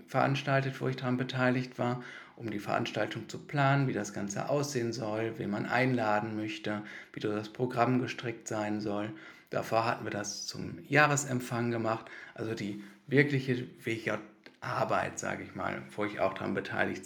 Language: German